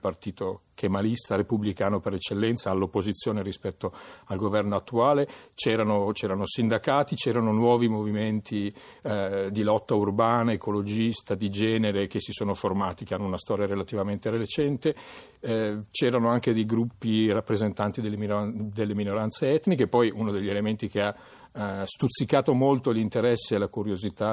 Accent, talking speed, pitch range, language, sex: native, 135 wpm, 100-115 Hz, Italian, male